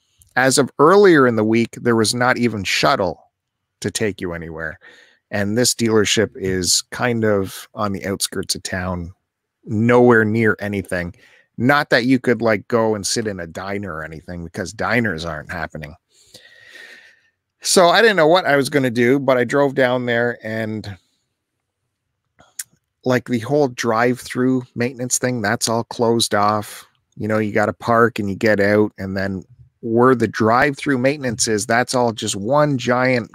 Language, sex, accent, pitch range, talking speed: English, male, American, 100-125 Hz, 170 wpm